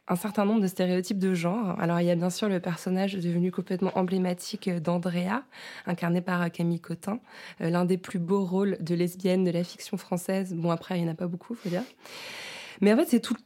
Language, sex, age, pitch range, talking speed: French, female, 20-39, 175-200 Hz, 225 wpm